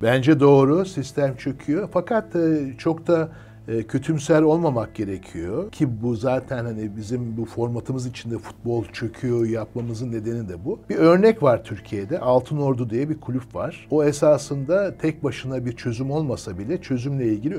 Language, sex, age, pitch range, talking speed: Turkish, male, 60-79, 115-150 Hz, 145 wpm